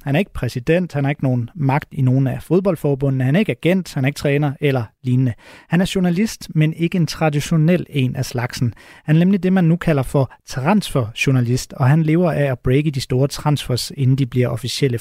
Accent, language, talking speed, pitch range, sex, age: native, Danish, 220 wpm, 130-165 Hz, male, 30-49